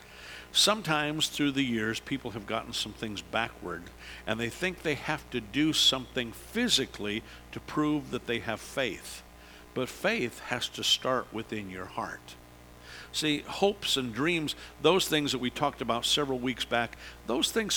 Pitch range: 80-130 Hz